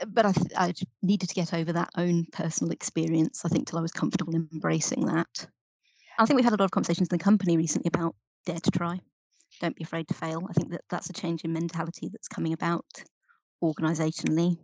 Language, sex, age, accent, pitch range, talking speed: English, female, 30-49, British, 170-205 Hz, 215 wpm